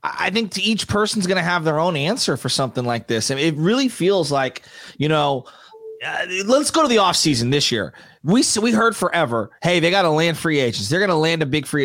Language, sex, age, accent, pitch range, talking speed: English, male, 30-49, American, 170-225 Hz, 260 wpm